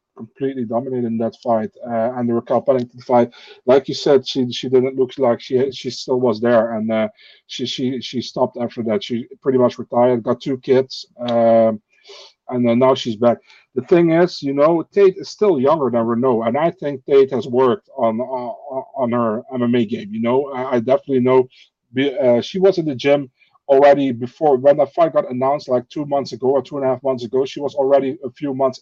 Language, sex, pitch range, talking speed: English, male, 120-140 Hz, 220 wpm